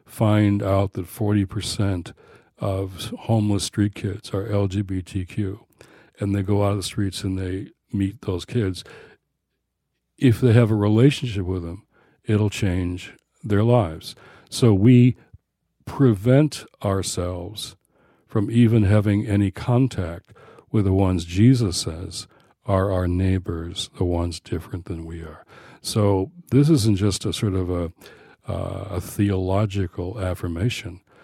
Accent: American